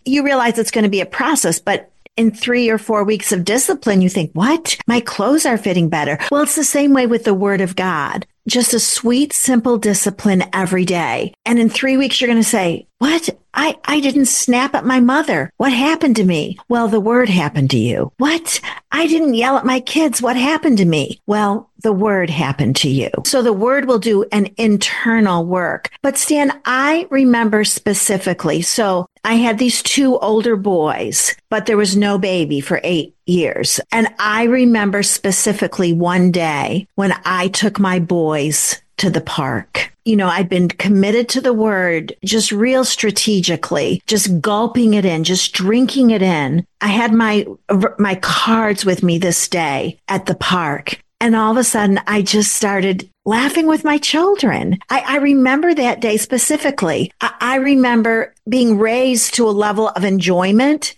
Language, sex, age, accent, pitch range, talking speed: English, female, 50-69, American, 190-250 Hz, 180 wpm